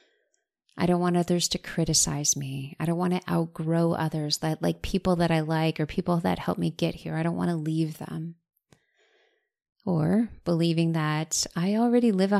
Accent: American